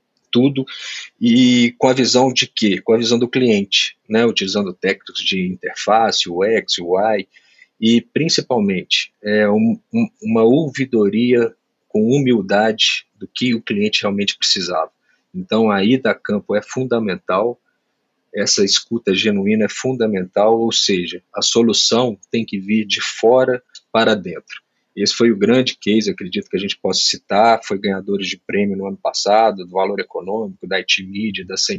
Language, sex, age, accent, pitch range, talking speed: Portuguese, male, 40-59, Brazilian, 100-140 Hz, 160 wpm